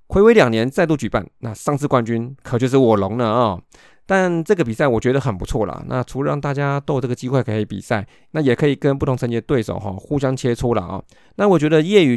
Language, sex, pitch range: Chinese, male, 115-145 Hz